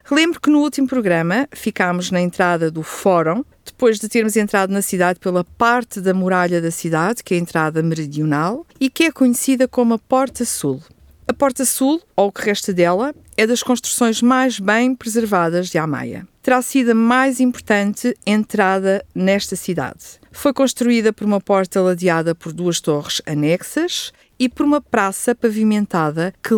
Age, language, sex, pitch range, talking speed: 50-69, Portuguese, female, 180-255 Hz, 170 wpm